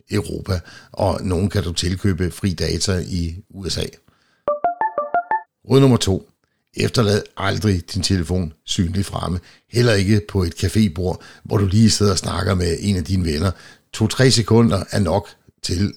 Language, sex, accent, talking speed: Danish, male, native, 150 wpm